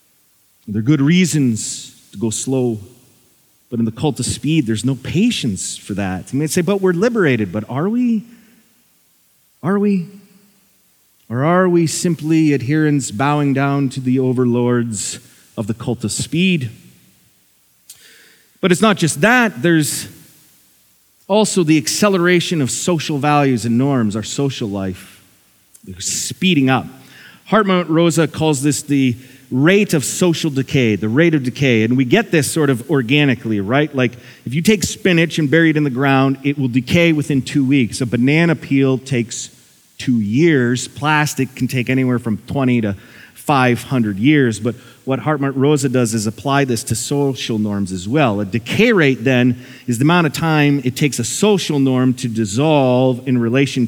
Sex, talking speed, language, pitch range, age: male, 165 wpm, English, 120-160 Hz, 30-49